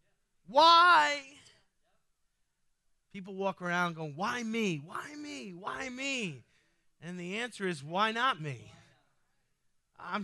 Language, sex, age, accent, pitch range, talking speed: English, male, 40-59, American, 155-210 Hz, 110 wpm